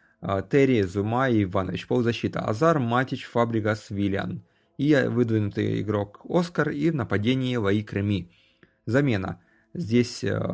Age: 30-49